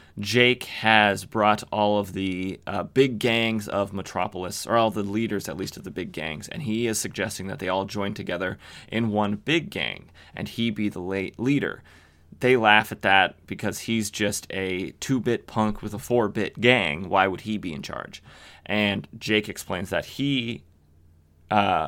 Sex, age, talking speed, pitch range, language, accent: male, 30-49, 180 wpm, 95-115 Hz, English, American